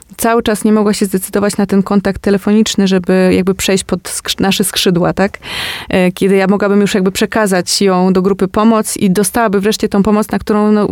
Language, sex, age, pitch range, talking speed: Polish, female, 20-39, 195-220 Hz, 205 wpm